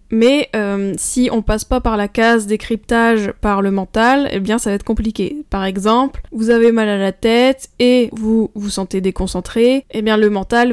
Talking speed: 200 wpm